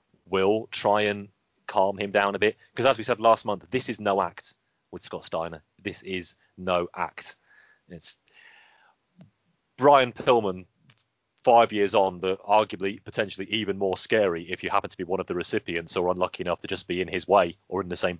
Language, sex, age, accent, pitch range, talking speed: English, male, 30-49, British, 95-125 Hz, 195 wpm